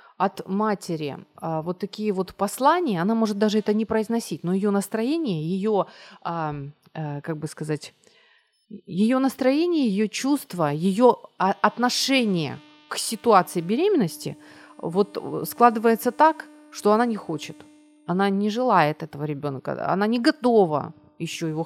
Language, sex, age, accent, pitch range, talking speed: Ukrainian, female, 30-49, native, 175-245 Hz, 125 wpm